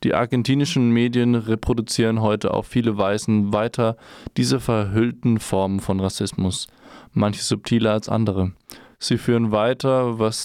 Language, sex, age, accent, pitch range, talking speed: German, male, 20-39, German, 100-120 Hz, 125 wpm